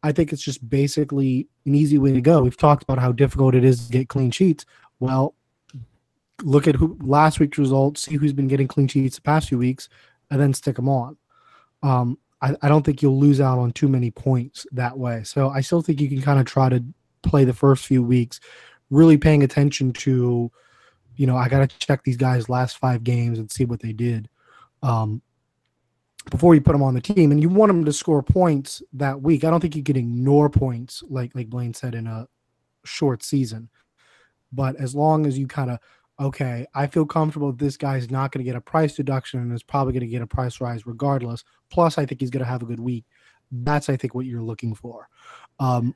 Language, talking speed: English, 225 wpm